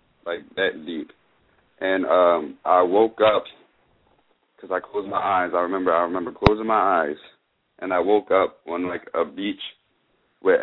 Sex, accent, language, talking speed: male, American, English, 165 wpm